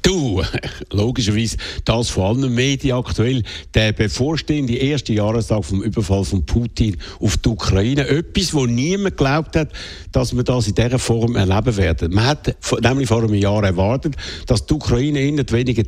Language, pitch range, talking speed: German, 105-135 Hz, 170 wpm